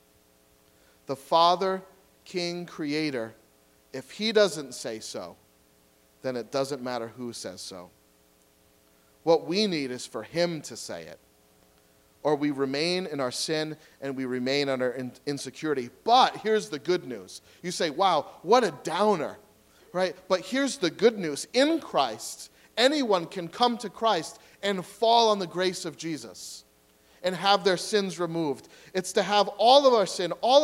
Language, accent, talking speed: English, American, 160 wpm